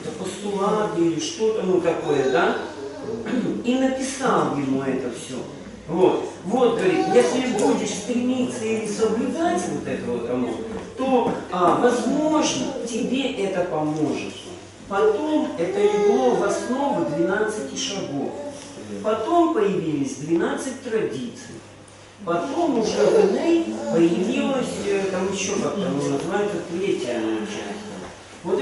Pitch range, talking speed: 190-275 Hz, 100 wpm